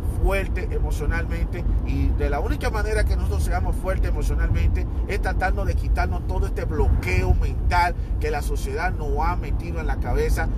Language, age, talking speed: Spanish, 40-59, 165 wpm